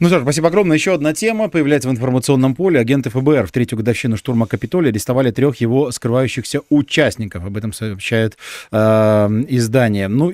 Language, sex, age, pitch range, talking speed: Russian, male, 20-39, 110-140 Hz, 175 wpm